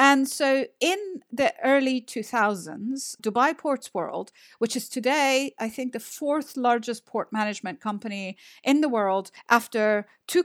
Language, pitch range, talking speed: English, 205-255 Hz, 145 wpm